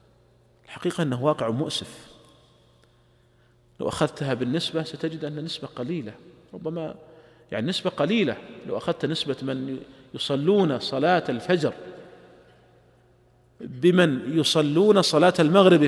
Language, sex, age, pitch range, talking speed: Arabic, male, 40-59, 125-185 Hz, 100 wpm